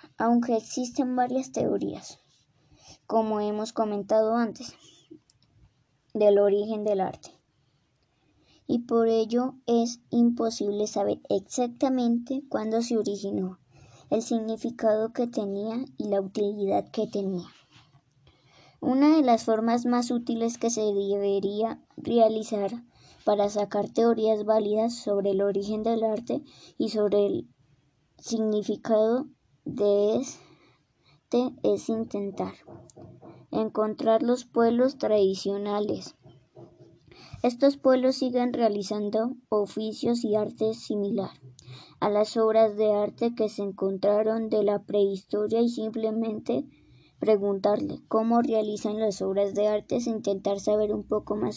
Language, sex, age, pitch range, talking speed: Spanish, male, 10-29, 200-235 Hz, 110 wpm